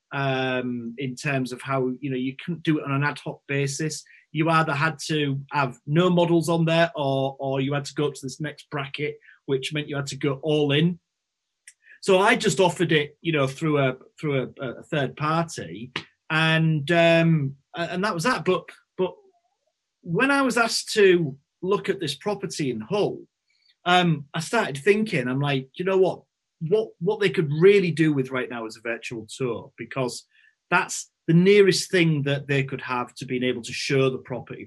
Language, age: English, 30-49